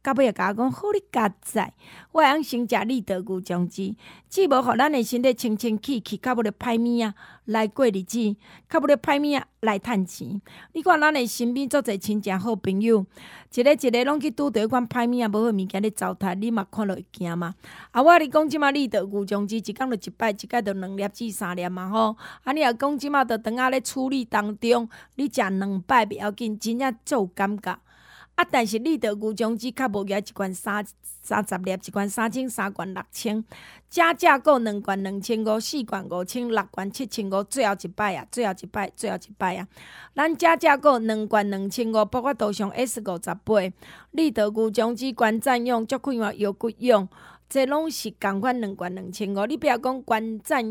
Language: Chinese